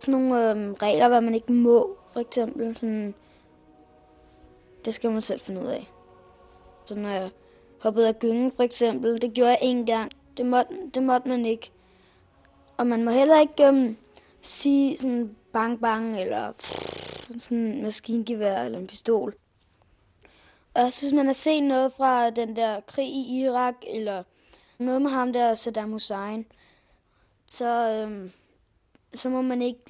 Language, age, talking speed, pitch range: Danish, 20-39, 160 wpm, 200-245 Hz